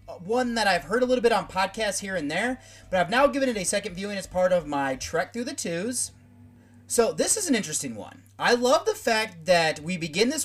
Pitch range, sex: 155-235 Hz, male